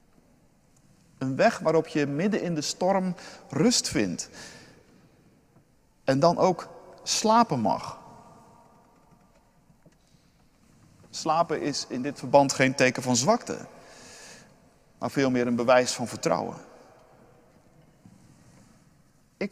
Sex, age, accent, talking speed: male, 50-69, Dutch, 100 wpm